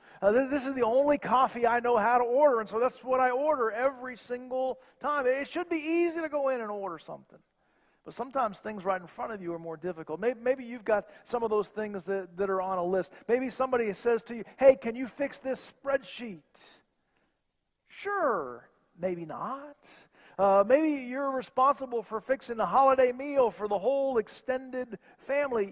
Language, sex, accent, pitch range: English, male, American, 200-260 Hz